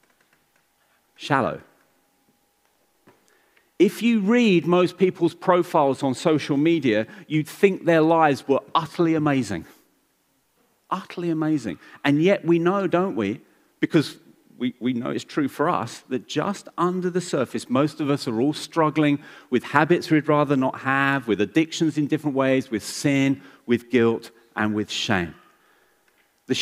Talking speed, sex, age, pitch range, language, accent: 140 wpm, male, 40-59, 135-180 Hz, English, British